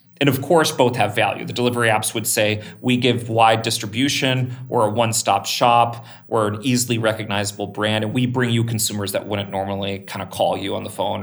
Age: 30-49